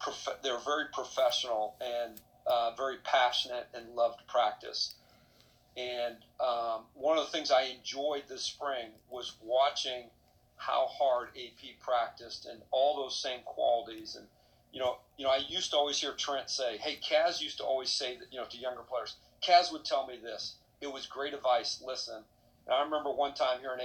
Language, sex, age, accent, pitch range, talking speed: English, male, 40-59, American, 120-135 Hz, 180 wpm